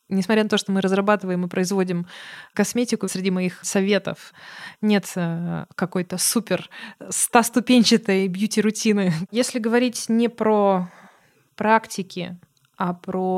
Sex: female